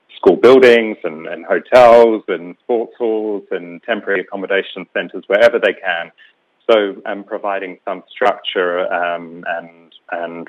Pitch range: 85-95 Hz